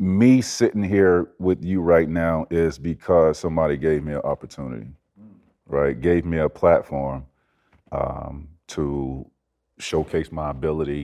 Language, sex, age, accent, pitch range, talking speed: English, male, 40-59, American, 75-90 Hz, 130 wpm